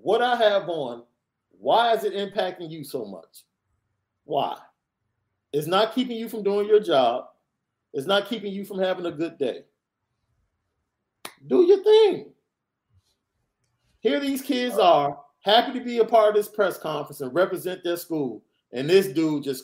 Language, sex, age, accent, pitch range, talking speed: English, male, 40-59, American, 145-225 Hz, 160 wpm